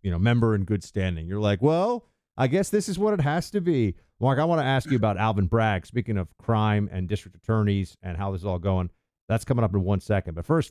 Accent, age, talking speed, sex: American, 50-69, 265 wpm, male